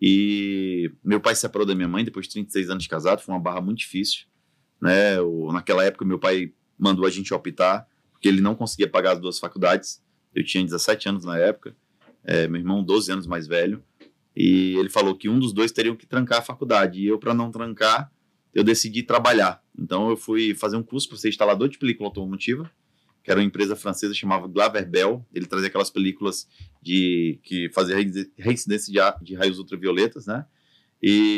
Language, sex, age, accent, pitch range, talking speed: Portuguese, male, 30-49, Brazilian, 95-130 Hz, 200 wpm